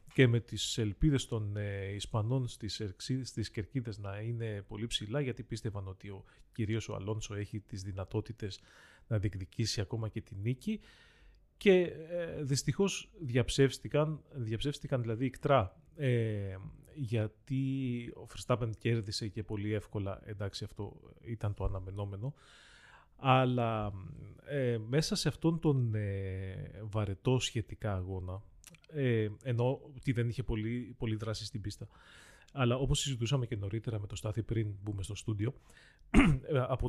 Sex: male